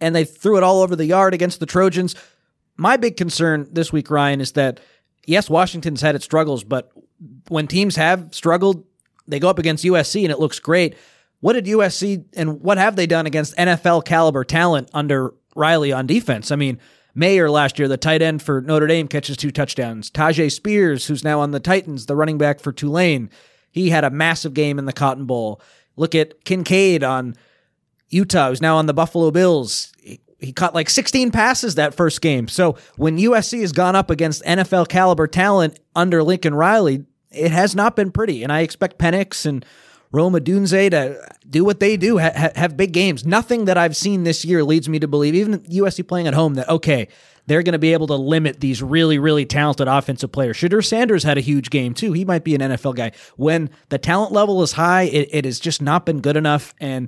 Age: 30-49